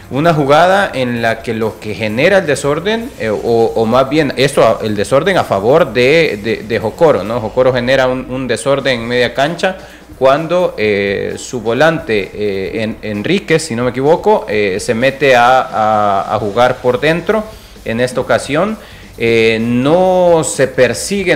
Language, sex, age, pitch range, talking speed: Spanish, male, 30-49, 115-145 Hz, 170 wpm